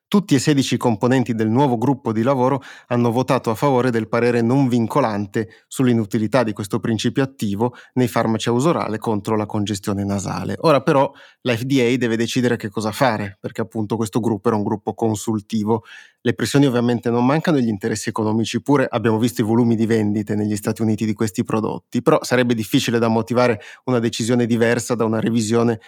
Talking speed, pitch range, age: 180 wpm, 110-125 Hz, 30-49